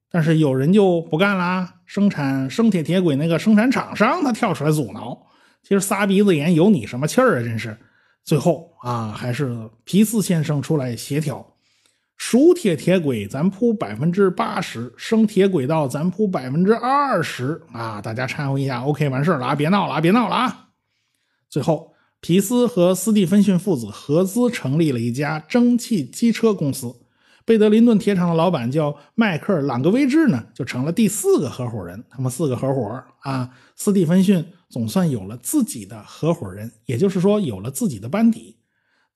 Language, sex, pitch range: Chinese, male, 135-200 Hz